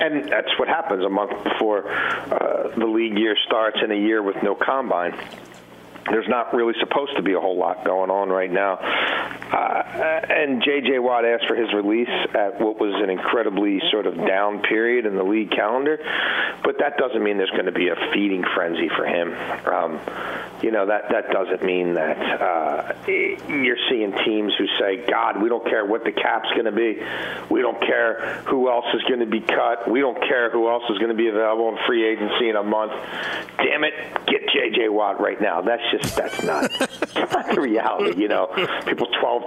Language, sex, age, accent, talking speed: English, male, 50-69, American, 200 wpm